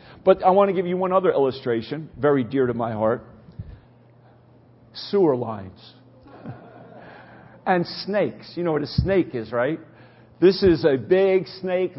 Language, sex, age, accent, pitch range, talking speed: English, male, 50-69, American, 135-190 Hz, 150 wpm